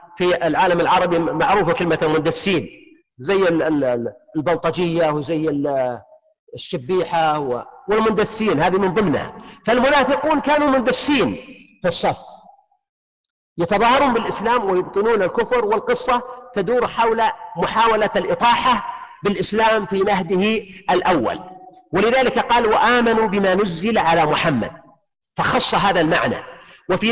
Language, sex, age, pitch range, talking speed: Arabic, male, 50-69, 170-250 Hz, 95 wpm